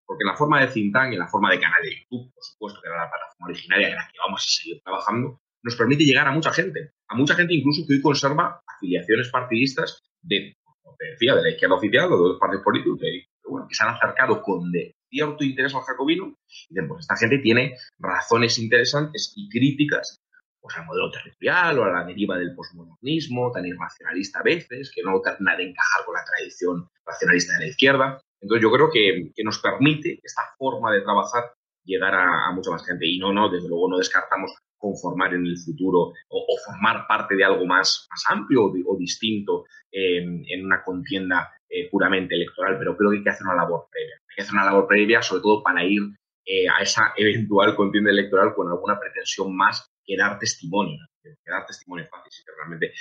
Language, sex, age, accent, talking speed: Spanish, male, 30-49, Spanish, 215 wpm